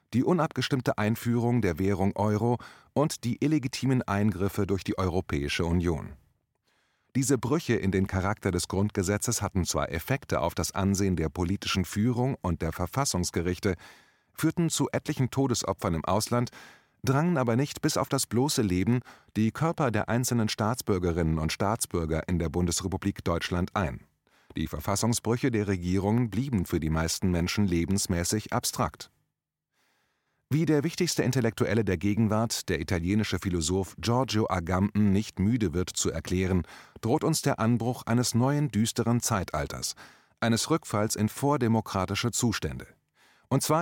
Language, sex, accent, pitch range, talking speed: German, male, German, 95-125 Hz, 140 wpm